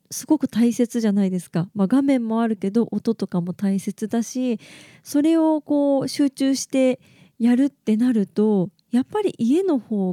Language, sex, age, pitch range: Japanese, female, 20-39, 195-270 Hz